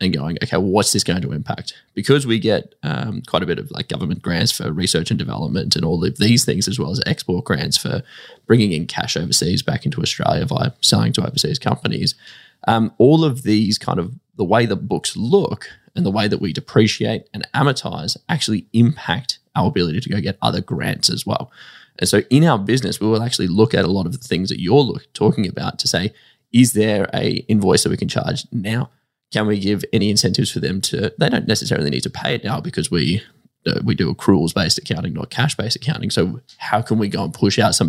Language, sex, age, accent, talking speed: English, male, 20-39, Australian, 225 wpm